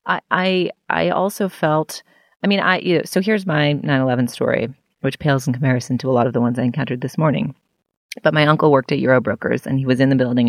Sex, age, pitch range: female, 30-49, 125-160 Hz